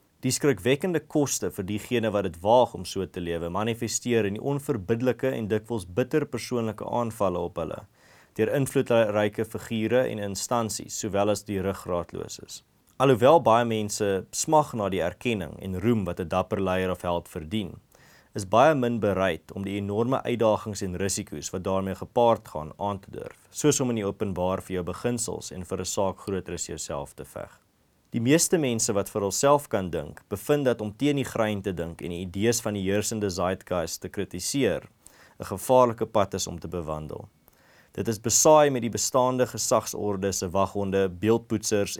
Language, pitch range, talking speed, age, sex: English, 95-120 Hz, 175 wpm, 20-39, male